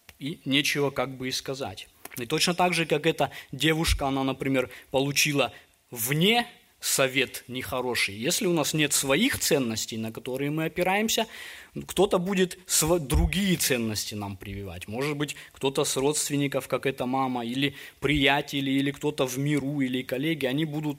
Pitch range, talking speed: 125-155 Hz, 155 wpm